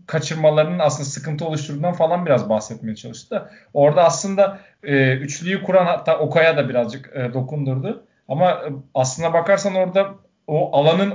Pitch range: 135-175 Hz